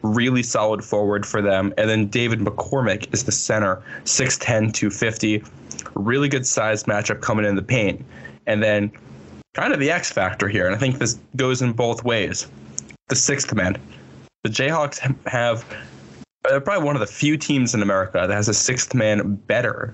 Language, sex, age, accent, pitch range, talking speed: English, male, 10-29, American, 105-125 Hz, 180 wpm